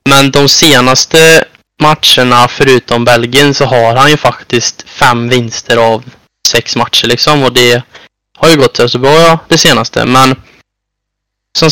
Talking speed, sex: 150 wpm, male